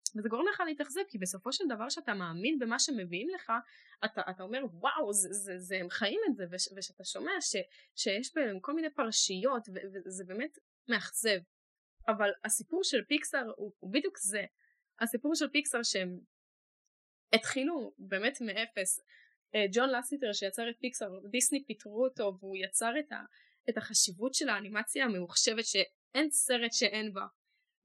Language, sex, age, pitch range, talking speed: Hebrew, female, 10-29, 205-265 Hz, 110 wpm